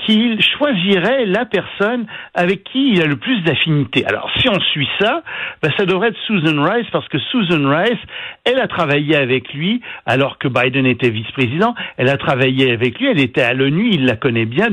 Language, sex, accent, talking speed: French, male, French, 200 wpm